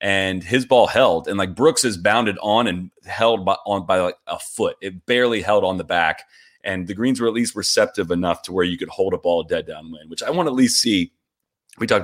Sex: male